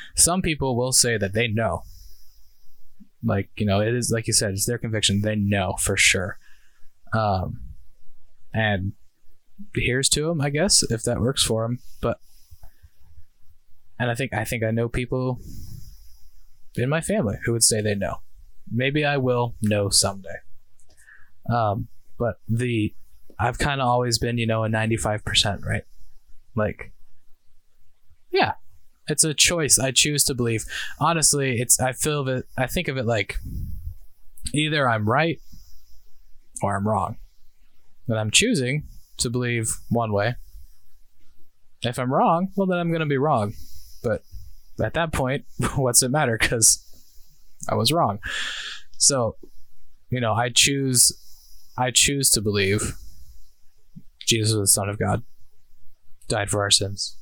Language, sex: English, male